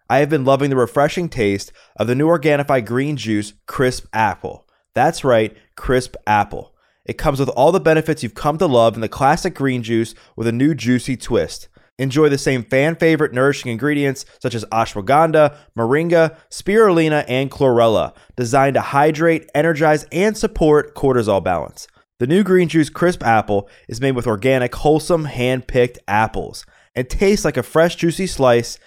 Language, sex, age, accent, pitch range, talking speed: English, male, 20-39, American, 115-150 Hz, 165 wpm